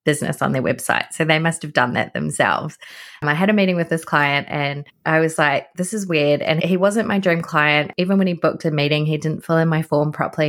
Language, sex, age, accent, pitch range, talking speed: English, female, 20-39, Australian, 150-180 Hz, 250 wpm